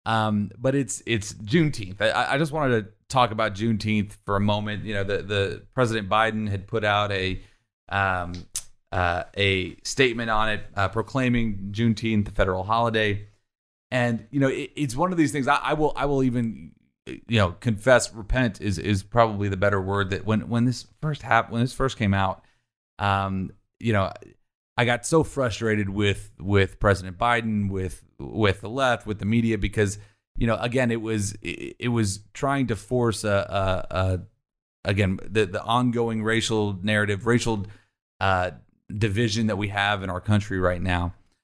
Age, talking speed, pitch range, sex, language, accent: 30-49, 180 wpm, 100-120 Hz, male, English, American